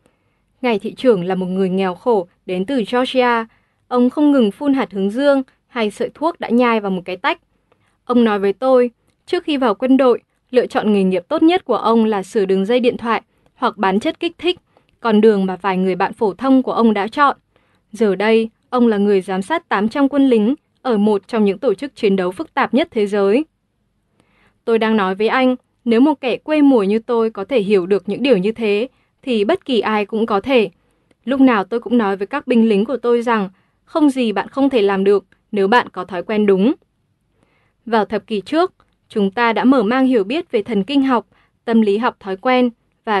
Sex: female